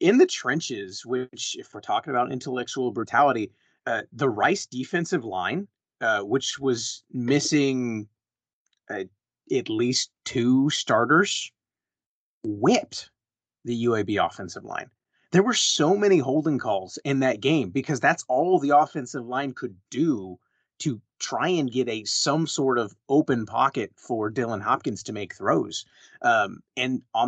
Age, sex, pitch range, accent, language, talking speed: 30-49, male, 125-160 Hz, American, English, 145 wpm